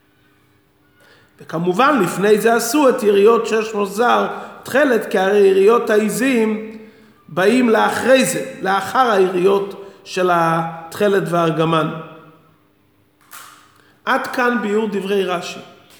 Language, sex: Hebrew, male